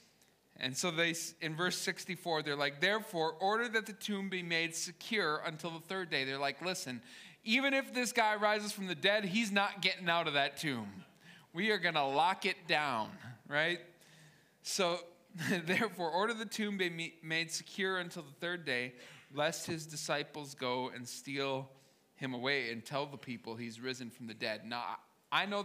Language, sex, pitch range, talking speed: English, male, 130-175 Hz, 180 wpm